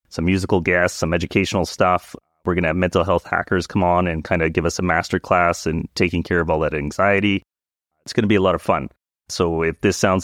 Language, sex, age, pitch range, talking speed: English, male, 30-49, 85-105 Hz, 245 wpm